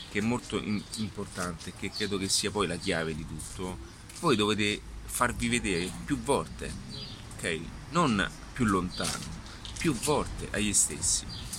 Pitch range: 90-105 Hz